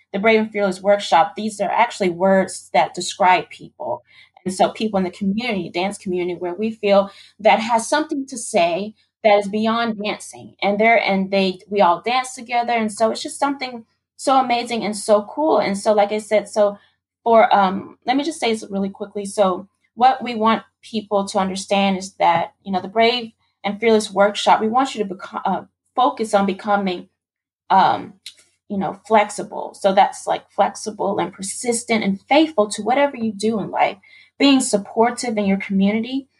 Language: English